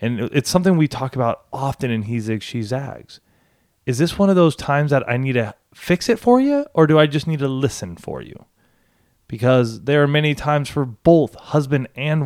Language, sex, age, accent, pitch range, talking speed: English, male, 20-39, American, 100-130 Hz, 215 wpm